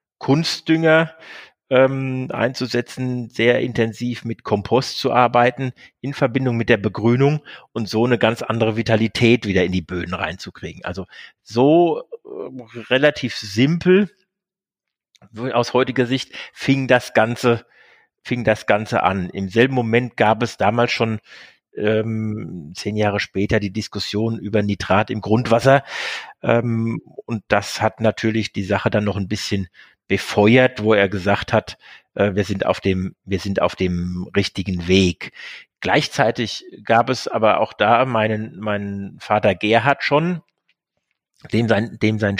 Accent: German